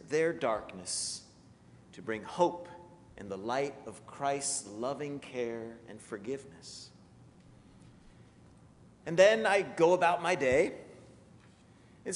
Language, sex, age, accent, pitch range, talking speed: English, male, 40-59, American, 125-180 Hz, 110 wpm